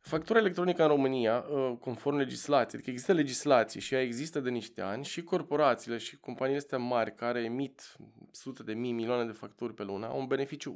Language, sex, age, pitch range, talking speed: Romanian, male, 20-39, 115-150 Hz, 190 wpm